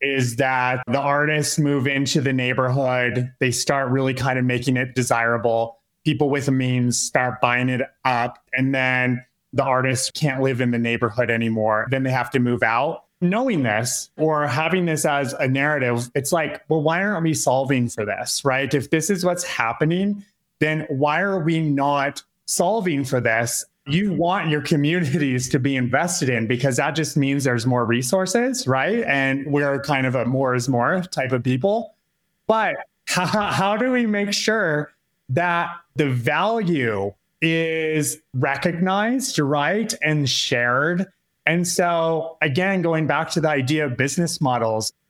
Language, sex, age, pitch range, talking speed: English, male, 30-49, 130-170 Hz, 165 wpm